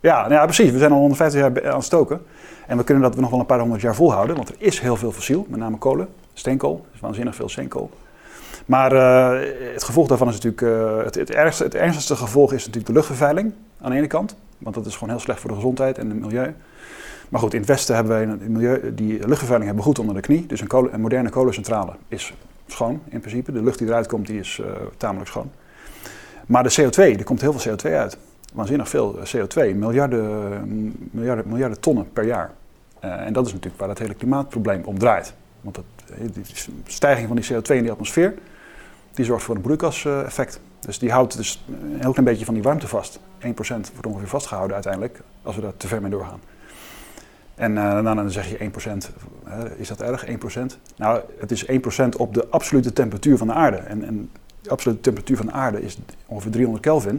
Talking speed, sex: 220 wpm, male